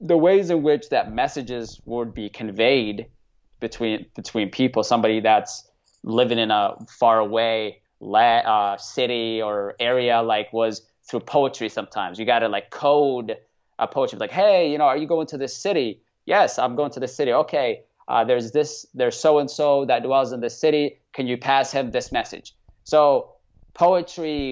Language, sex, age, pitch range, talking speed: English, male, 20-39, 115-150 Hz, 175 wpm